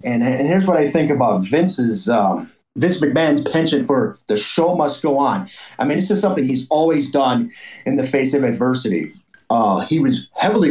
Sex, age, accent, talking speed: male, 30-49, American, 195 wpm